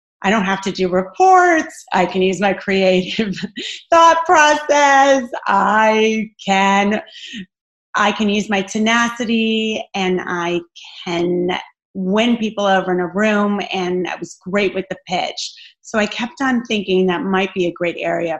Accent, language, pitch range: American, English, 180-225 Hz